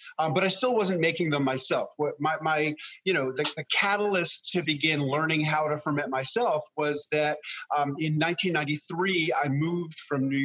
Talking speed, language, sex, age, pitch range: 180 wpm, English, male, 40-59, 130-150 Hz